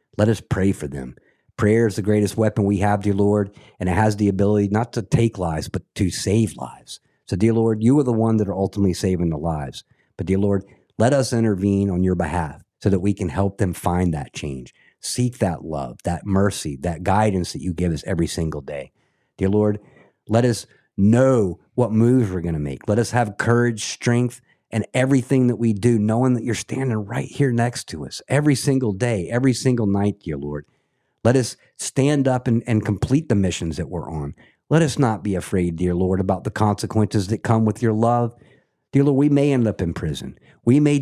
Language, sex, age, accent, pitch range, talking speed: English, male, 50-69, American, 95-125 Hz, 215 wpm